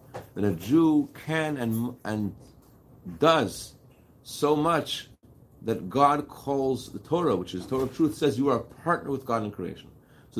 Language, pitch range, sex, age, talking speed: English, 105-130 Hz, male, 40-59, 175 wpm